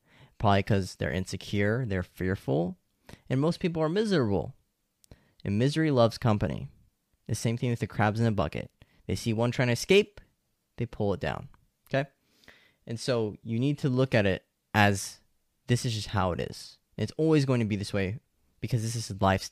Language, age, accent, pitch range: English, 10-29, American, 100-130 Hz